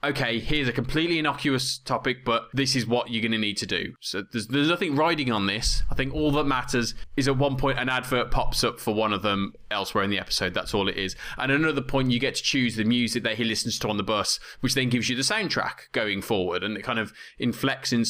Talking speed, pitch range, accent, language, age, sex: 260 wpm, 110-135 Hz, British, English, 20-39, male